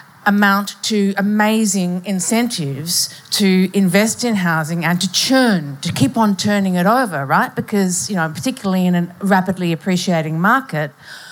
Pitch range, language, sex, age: 170-200 Hz, English, female, 50-69